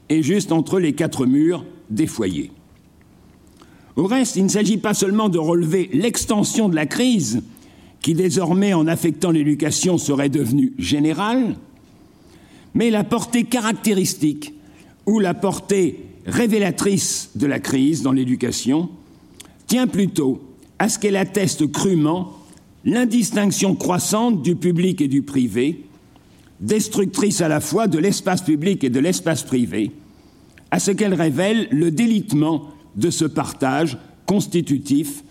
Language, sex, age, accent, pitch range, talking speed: French, male, 60-79, French, 150-205 Hz, 130 wpm